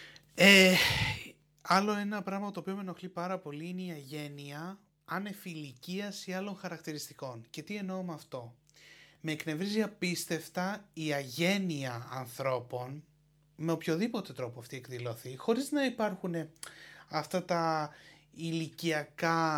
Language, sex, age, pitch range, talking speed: Greek, male, 30-49, 140-170 Hz, 115 wpm